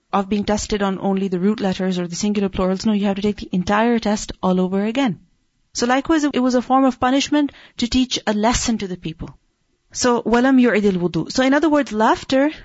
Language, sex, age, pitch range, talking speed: English, female, 30-49, 205-260 Hz, 225 wpm